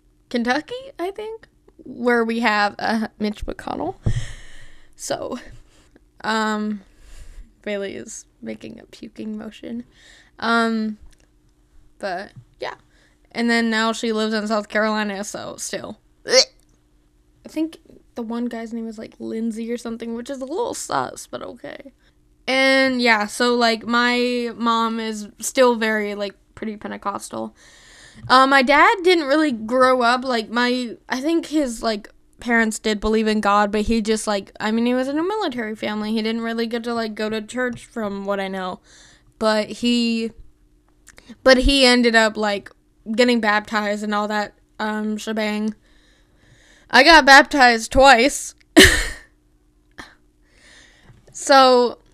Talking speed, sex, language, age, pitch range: 140 wpm, female, English, 10-29, 205-245 Hz